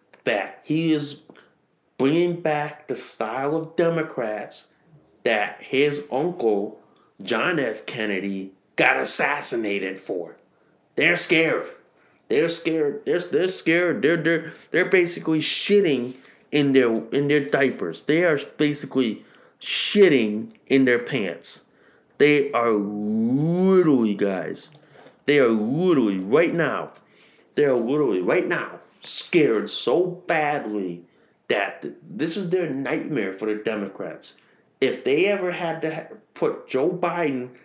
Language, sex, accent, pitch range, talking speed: English, male, American, 130-175 Hz, 115 wpm